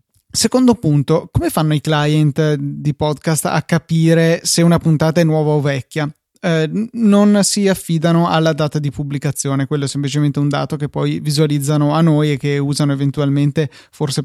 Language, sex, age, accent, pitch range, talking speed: Italian, male, 20-39, native, 145-175 Hz, 170 wpm